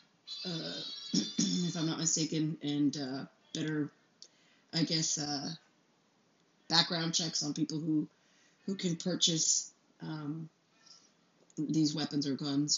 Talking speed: 115 wpm